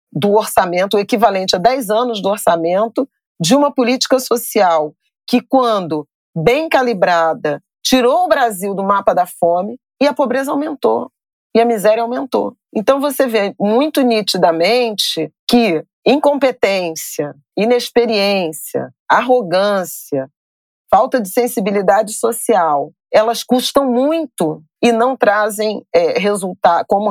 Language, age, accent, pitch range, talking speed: Portuguese, 40-59, Brazilian, 175-240 Hz, 115 wpm